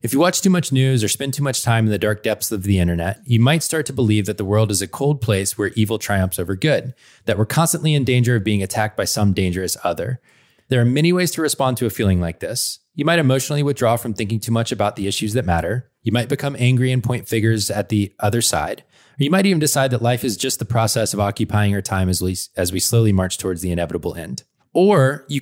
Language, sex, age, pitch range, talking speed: English, male, 20-39, 100-135 Hz, 255 wpm